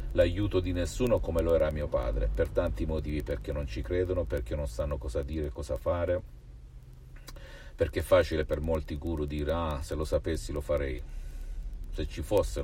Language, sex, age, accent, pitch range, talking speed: Italian, male, 50-69, native, 80-100 Hz, 180 wpm